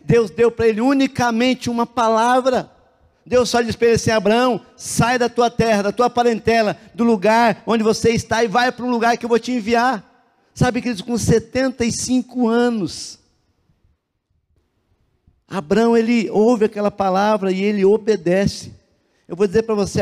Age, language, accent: 50-69, Portuguese, Brazilian